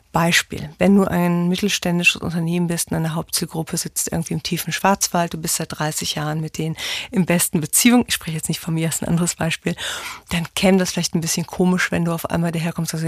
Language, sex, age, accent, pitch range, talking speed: German, female, 30-49, German, 170-200 Hz, 225 wpm